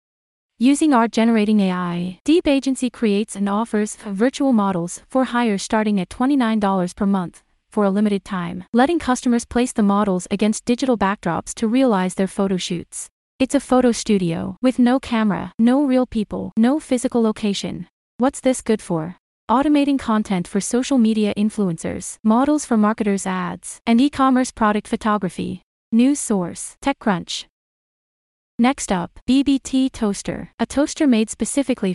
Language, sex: English, female